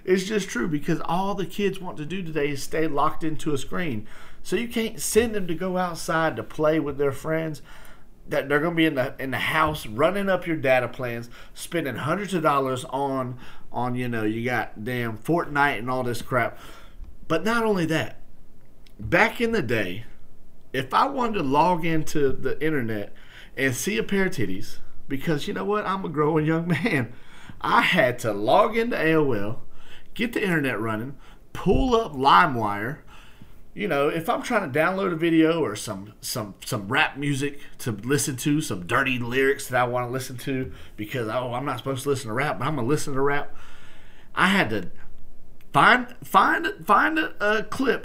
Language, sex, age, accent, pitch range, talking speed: English, male, 40-59, American, 125-175 Hz, 195 wpm